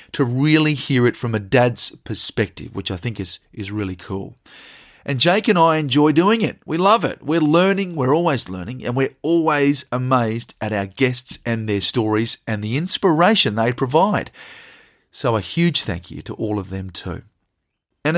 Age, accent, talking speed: 30-49, Australian, 185 wpm